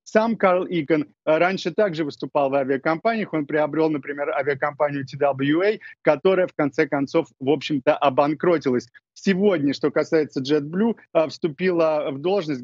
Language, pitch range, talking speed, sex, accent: Russian, 140-175 Hz, 130 wpm, male, native